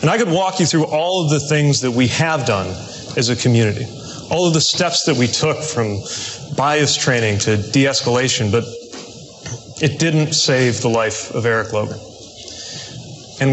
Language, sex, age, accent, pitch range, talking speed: English, male, 30-49, American, 120-150 Hz, 175 wpm